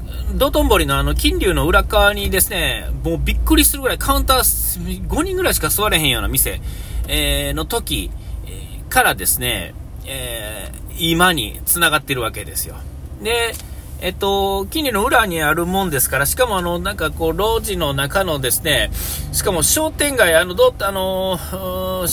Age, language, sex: 40-59, Japanese, male